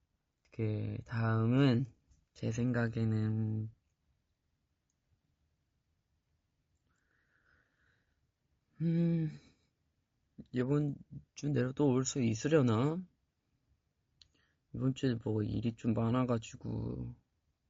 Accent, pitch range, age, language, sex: native, 105-130 Hz, 20-39, Korean, male